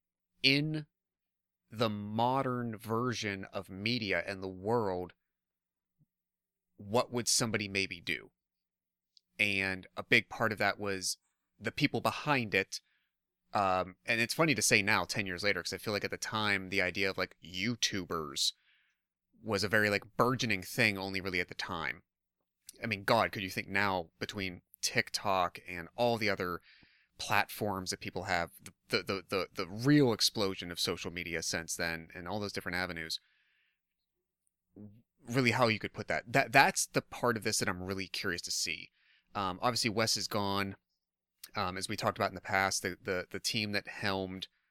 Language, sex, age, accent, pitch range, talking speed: English, male, 30-49, American, 95-115 Hz, 175 wpm